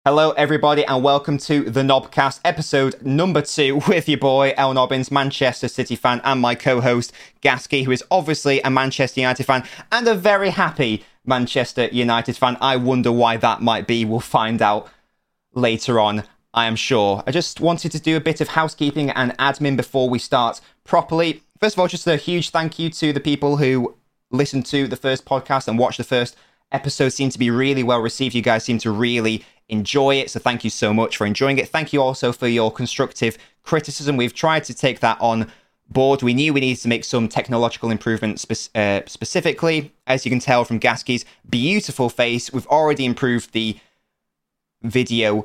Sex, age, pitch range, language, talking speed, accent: male, 20-39, 115-145 Hz, English, 190 wpm, British